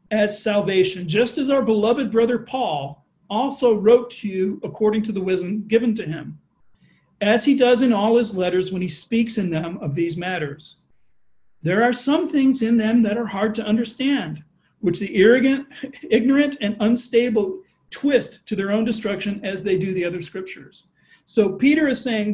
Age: 40-59